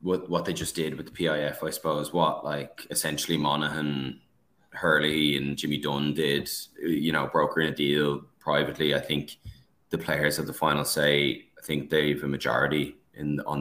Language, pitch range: English, 75-85 Hz